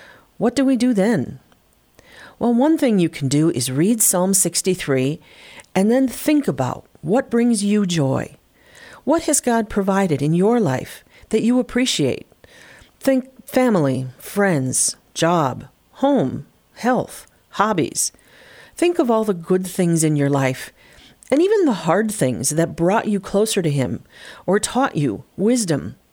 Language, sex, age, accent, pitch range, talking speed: English, female, 40-59, American, 145-230 Hz, 145 wpm